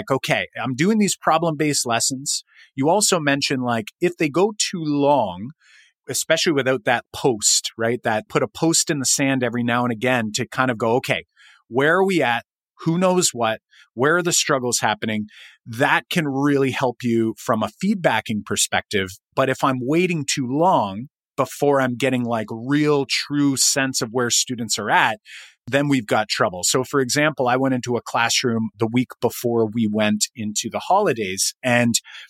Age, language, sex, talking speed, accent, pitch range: 30-49, English, male, 180 wpm, American, 120-150 Hz